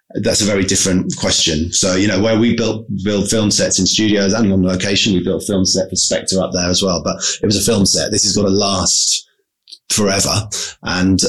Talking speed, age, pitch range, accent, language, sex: 220 wpm, 30-49, 90-105 Hz, British, English, male